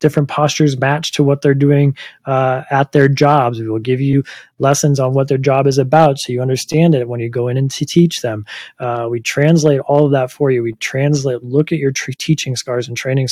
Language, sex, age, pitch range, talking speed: English, male, 20-39, 120-150 Hz, 235 wpm